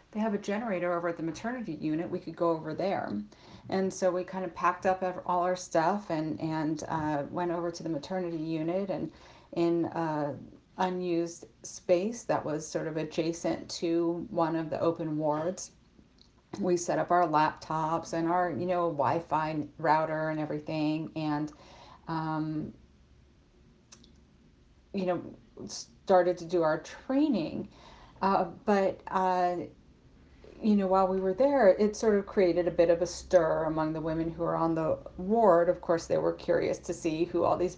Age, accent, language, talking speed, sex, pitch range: 40-59, American, English, 170 wpm, female, 155-180 Hz